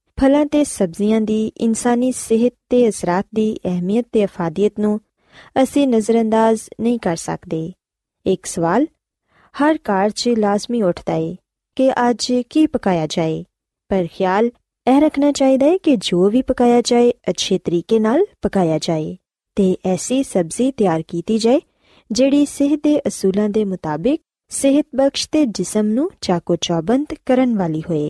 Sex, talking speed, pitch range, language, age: female, 130 wpm, 185-265 Hz, Punjabi, 20-39